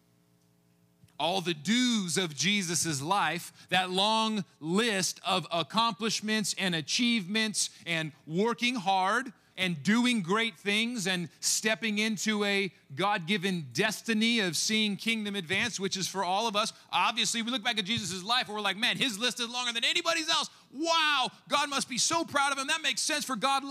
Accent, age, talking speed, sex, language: American, 30-49, 165 wpm, male, English